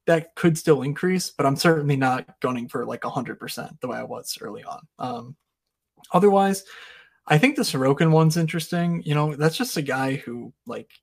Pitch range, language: 125-155 Hz, English